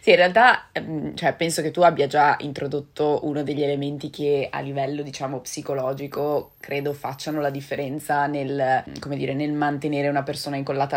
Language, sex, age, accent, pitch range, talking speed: Italian, female, 20-39, native, 140-150 Hz, 165 wpm